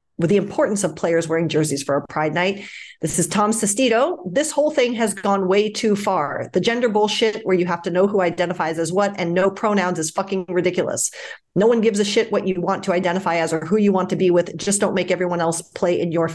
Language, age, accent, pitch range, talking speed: English, 40-59, American, 170-205 Hz, 245 wpm